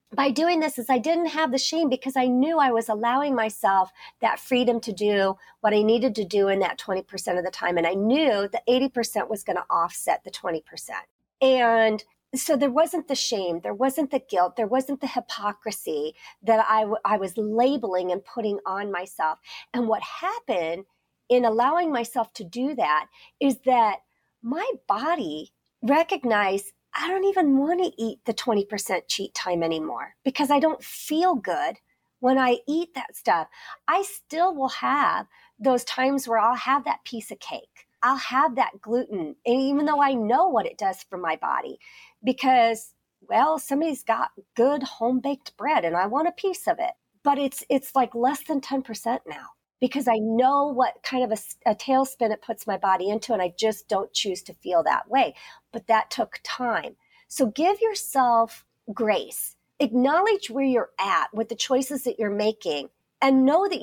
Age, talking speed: 40-59, 180 wpm